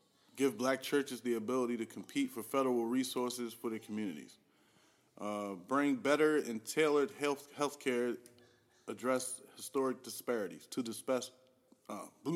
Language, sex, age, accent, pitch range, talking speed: English, male, 20-39, American, 105-130 Hz, 105 wpm